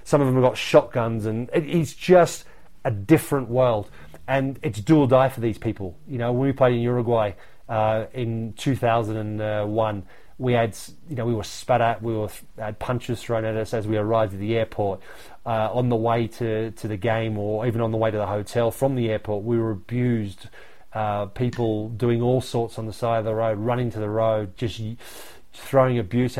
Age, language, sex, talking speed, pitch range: 30-49, English, male, 205 wpm, 110-135 Hz